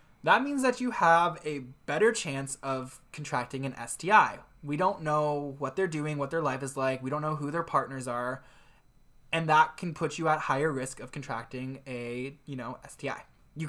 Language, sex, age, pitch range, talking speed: English, male, 20-39, 135-165 Hz, 195 wpm